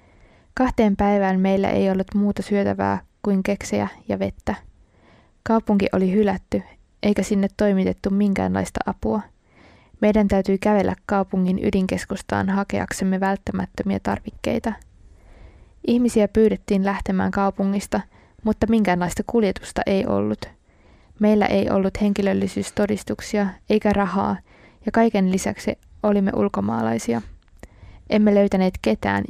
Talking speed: 100 wpm